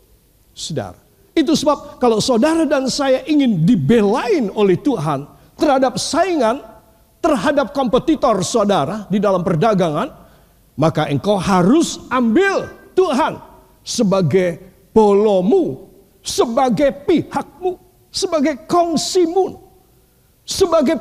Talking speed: 90 wpm